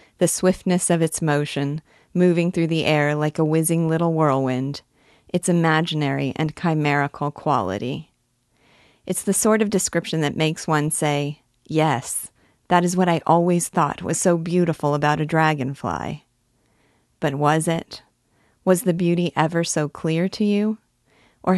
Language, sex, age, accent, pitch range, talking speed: English, female, 40-59, American, 145-175 Hz, 145 wpm